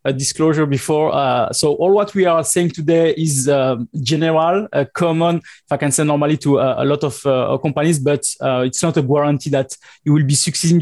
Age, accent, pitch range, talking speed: 20-39, French, 135-170 Hz, 215 wpm